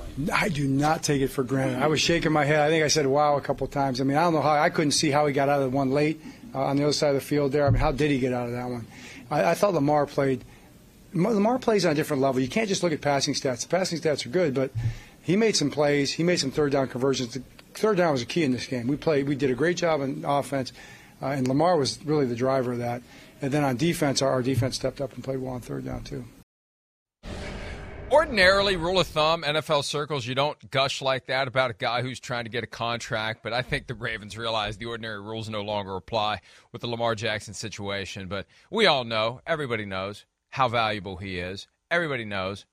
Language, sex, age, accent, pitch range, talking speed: English, male, 40-59, American, 110-150 Hz, 255 wpm